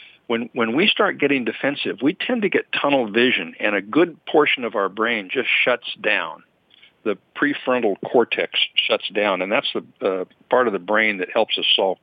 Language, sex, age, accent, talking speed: English, male, 50-69, American, 195 wpm